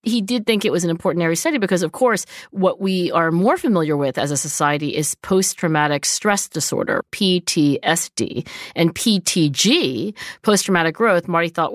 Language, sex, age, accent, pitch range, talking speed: English, female, 40-59, American, 155-200 Hz, 165 wpm